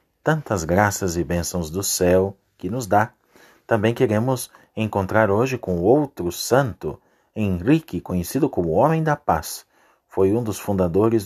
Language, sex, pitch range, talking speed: Portuguese, male, 95-120 Hz, 145 wpm